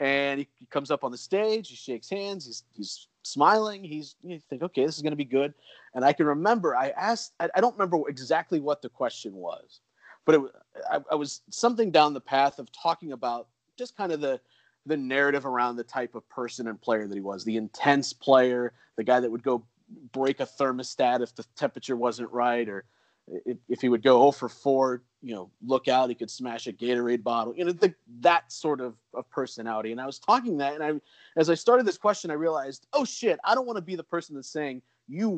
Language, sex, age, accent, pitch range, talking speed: English, male, 30-49, American, 125-185 Hz, 225 wpm